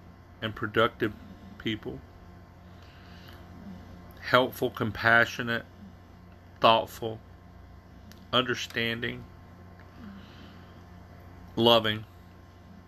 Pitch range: 90-120 Hz